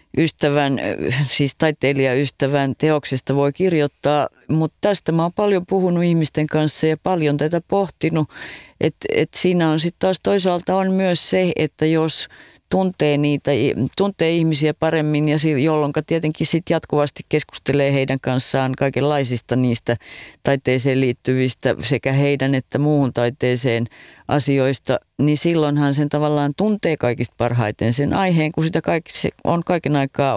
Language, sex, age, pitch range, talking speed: Finnish, female, 30-49, 135-160 Hz, 135 wpm